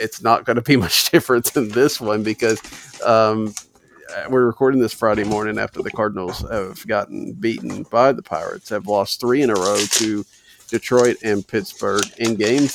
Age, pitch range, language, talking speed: 40-59, 100-125 Hz, English, 180 wpm